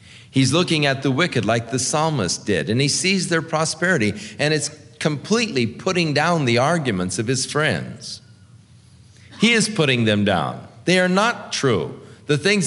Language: English